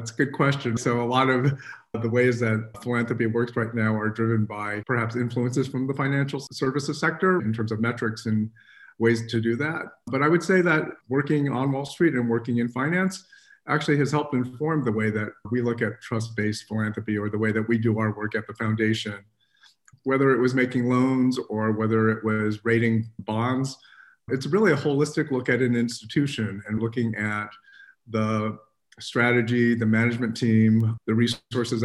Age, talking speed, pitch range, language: 40-59, 185 wpm, 110-125 Hz, English